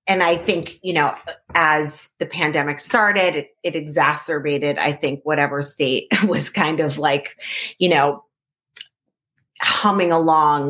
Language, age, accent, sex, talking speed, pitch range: English, 30-49, American, female, 135 wpm, 145-180 Hz